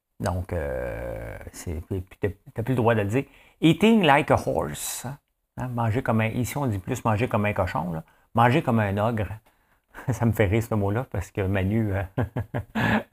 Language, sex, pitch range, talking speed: English, male, 95-120 Hz, 185 wpm